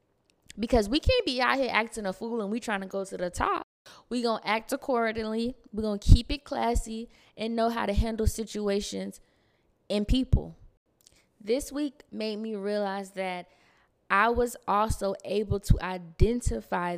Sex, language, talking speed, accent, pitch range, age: female, English, 170 wpm, American, 195-245 Hz, 20-39